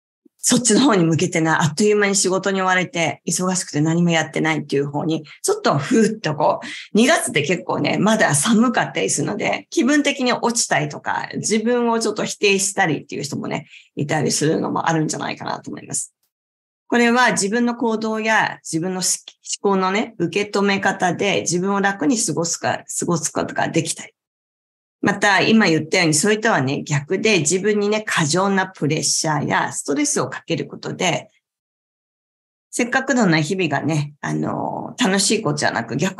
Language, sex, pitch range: Japanese, female, 170-230 Hz